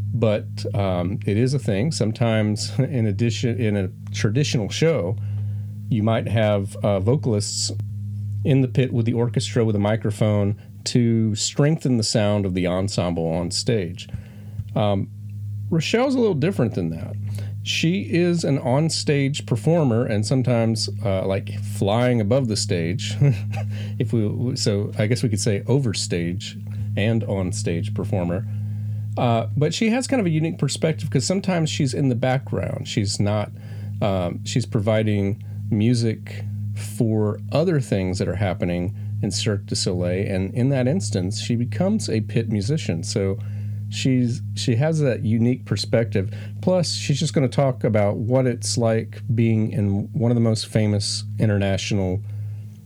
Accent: American